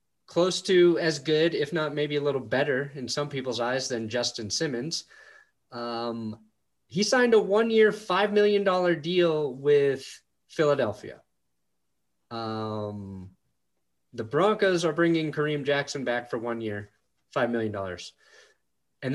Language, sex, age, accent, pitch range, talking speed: English, male, 30-49, American, 120-165 Hz, 130 wpm